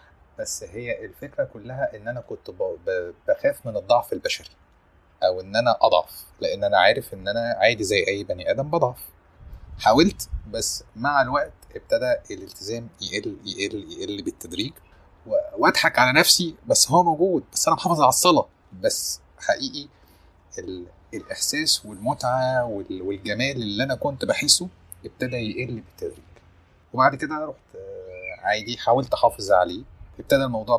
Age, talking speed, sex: 30-49, 135 wpm, male